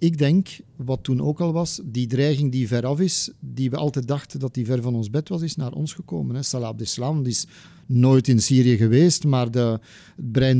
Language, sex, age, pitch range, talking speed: Dutch, male, 50-69, 125-160 Hz, 215 wpm